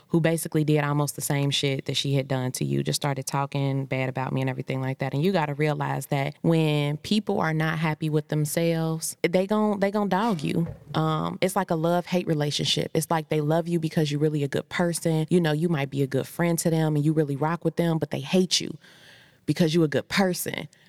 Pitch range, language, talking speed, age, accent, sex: 145-165 Hz, English, 245 wpm, 20-39, American, female